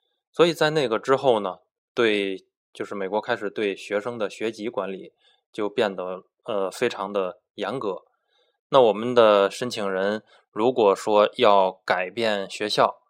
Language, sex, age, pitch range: Chinese, male, 20-39, 95-115 Hz